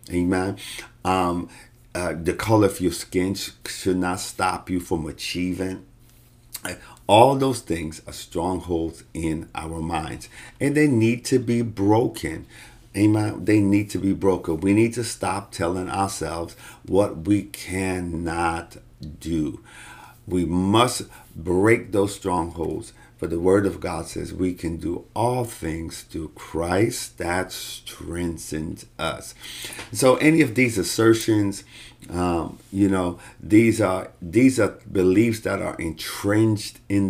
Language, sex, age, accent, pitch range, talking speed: English, male, 50-69, American, 90-115 Hz, 135 wpm